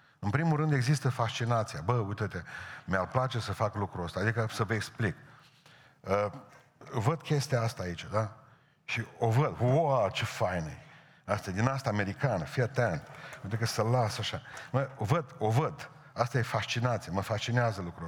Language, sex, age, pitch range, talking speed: Romanian, male, 50-69, 115-145 Hz, 160 wpm